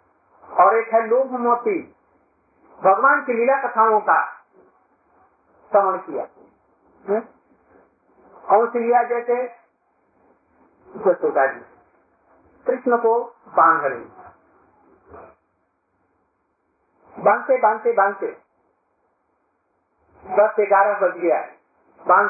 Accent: native